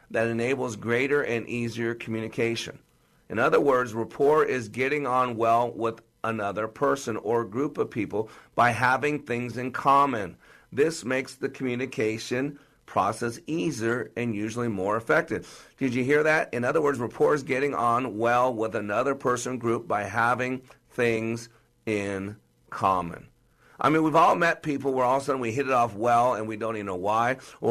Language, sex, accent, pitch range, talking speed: English, male, American, 115-140 Hz, 175 wpm